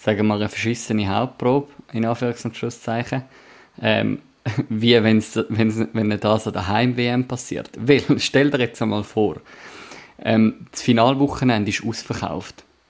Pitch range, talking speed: 105-120 Hz, 145 wpm